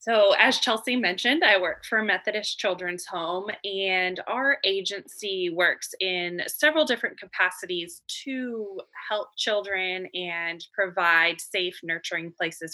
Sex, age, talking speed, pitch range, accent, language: female, 20-39, 120 wpm, 175-210 Hz, American, English